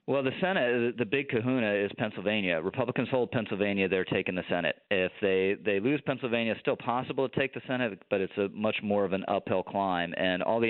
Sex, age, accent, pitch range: male, 30-49, American, 95-120 Hz